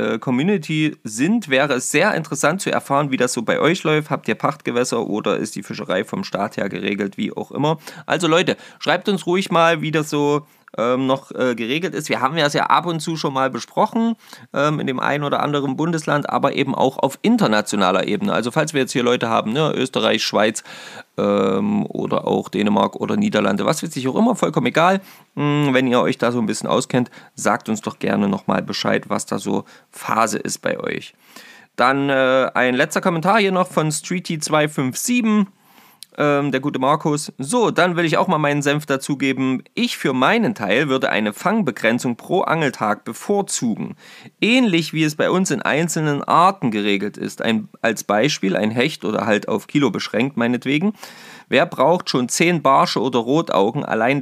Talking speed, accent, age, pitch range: 190 wpm, German, 20-39, 130-175 Hz